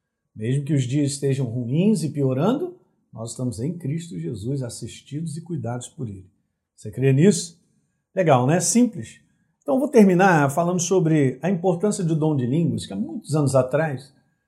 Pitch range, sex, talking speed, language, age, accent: 135-185 Hz, male, 170 wpm, Portuguese, 50-69, Brazilian